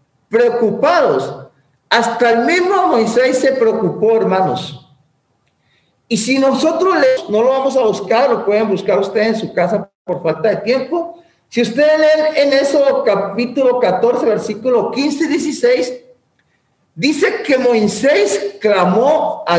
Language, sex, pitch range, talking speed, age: English, male, 200-310 Hz, 135 wpm, 40-59